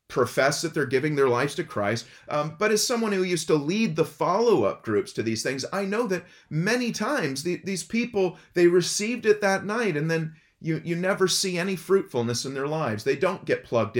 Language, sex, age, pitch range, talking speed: English, male, 30-49, 120-180 Hz, 215 wpm